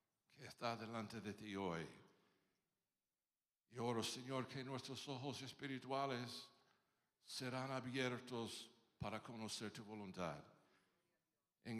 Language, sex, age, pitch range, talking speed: Spanish, male, 60-79, 110-150 Hz, 95 wpm